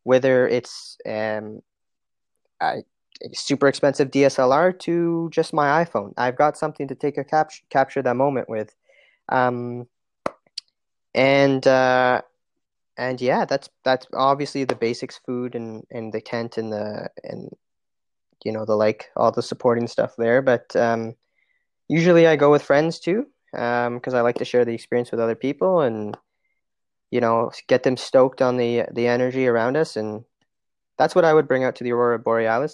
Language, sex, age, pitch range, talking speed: English, male, 20-39, 115-140 Hz, 165 wpm